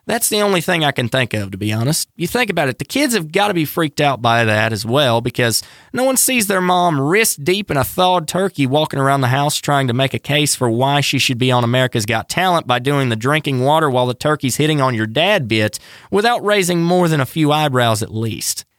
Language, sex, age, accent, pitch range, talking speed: English, male, 20-39, American, 125-175 Hz, 250 wpm